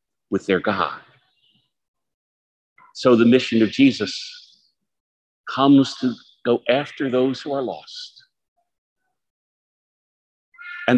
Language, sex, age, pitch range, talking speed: English, male, 50-69, 125-155 Hz, 95 wpm